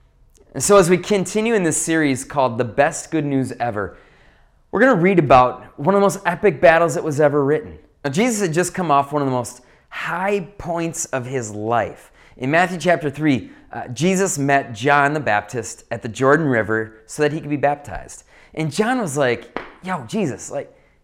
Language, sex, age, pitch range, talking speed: English, male, 20-39, 130-180 Hz, 200 wpm